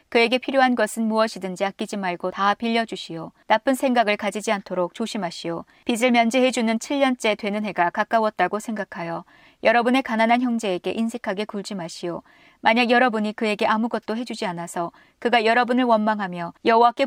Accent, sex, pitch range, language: native, female, 195-245 Hz, Korean